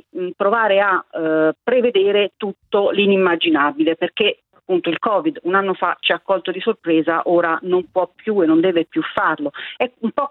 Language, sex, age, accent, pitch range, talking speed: Italian, female, 40-59, native, 170-220 Hz, 175 wpm